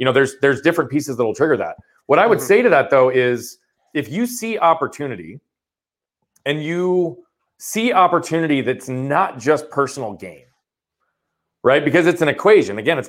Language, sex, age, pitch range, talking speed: English, male, 30-49, 130-170 Hz, 175 wpm